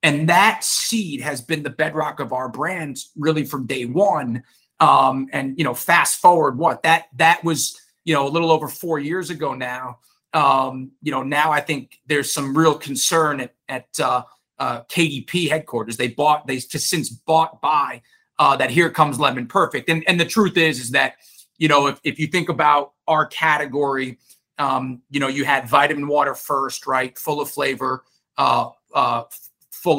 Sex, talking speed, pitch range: male, 185 wpm, 125-155 Hz